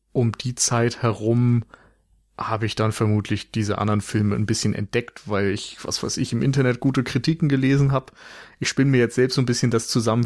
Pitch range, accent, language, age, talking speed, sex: 115-135 Hz, German, German, 30-49, 205 wpm, male